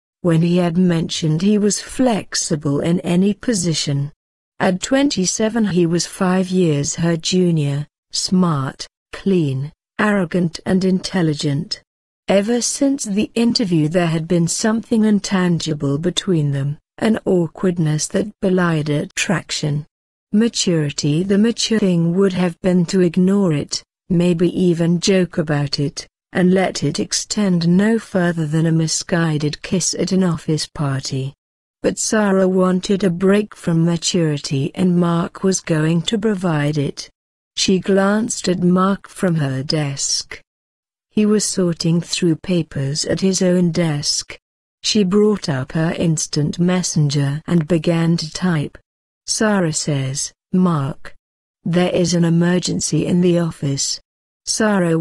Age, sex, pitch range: 60-79, female, 155-190 Hz